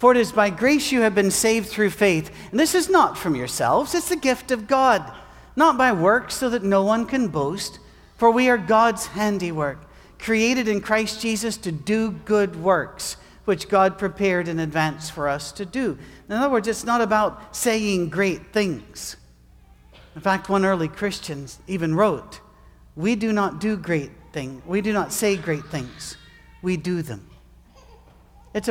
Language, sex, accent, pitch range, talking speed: English, male, American, 165-225 Hz, 180 wpm